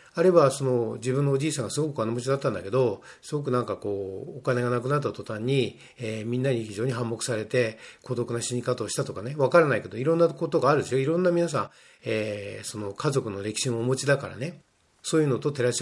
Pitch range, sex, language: 115-150 Hz, male, Japanese